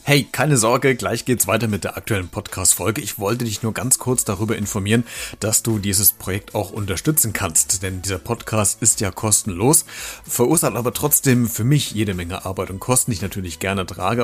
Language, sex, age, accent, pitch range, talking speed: German, male, 40-59, German, 105-130 Hz, 195 wpm